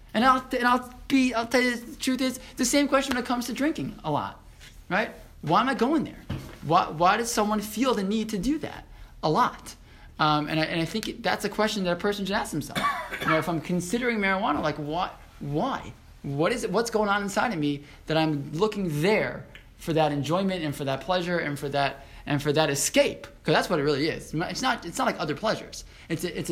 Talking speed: 240 wpm